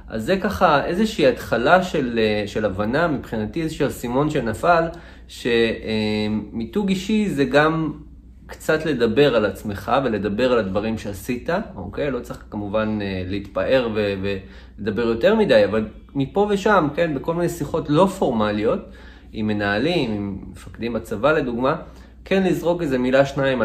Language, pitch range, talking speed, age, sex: Hebrew, 105-150 Hz, 140 wpm, 30-49, male